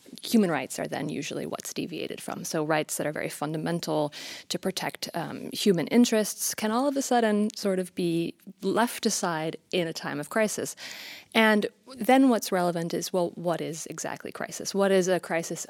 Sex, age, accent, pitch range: female, 30-49, American, 165-215 Hz